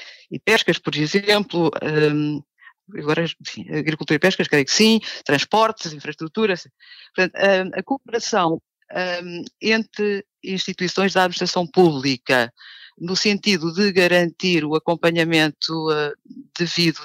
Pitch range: 155-200 Hz